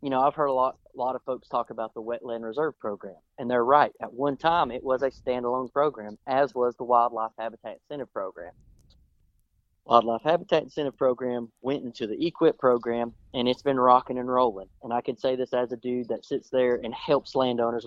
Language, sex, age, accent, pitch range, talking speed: English, male, 30-49, American, 115-140 Hz, 210 wpm